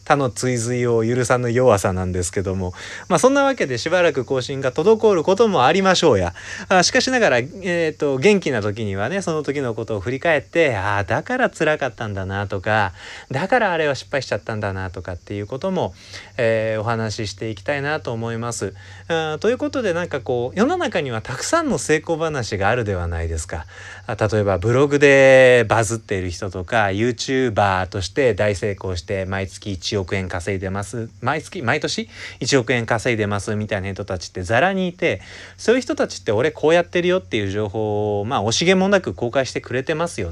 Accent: native